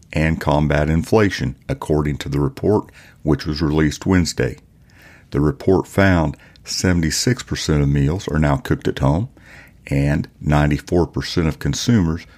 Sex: male